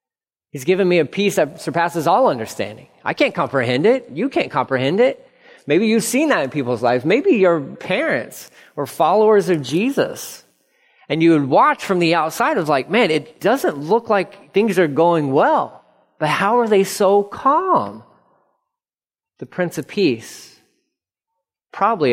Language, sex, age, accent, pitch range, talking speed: English, male, 30-49, American, 135-200 Hz, 165 wpm